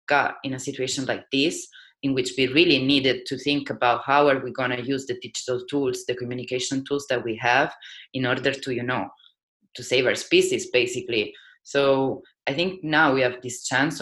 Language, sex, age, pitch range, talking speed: English, female, 20-39, 120-145 Hz, 195 wpm